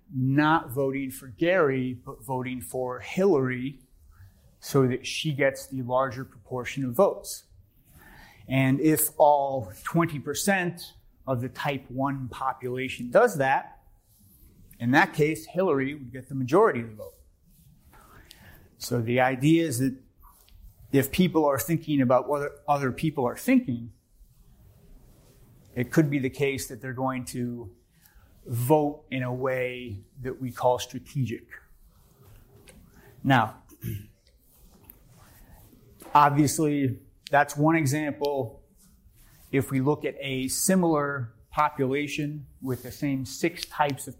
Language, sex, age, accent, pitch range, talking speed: English, male, 30-49, American, 120-145 Hz, 120 wpm